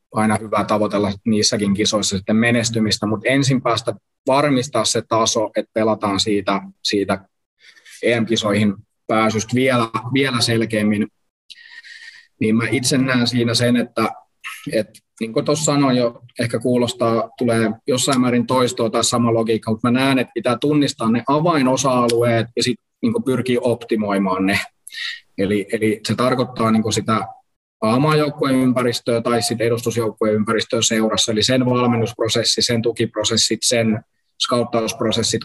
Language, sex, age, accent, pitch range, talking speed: Finnish, male, 20-39, native, 105-125 Hz, 125 wpm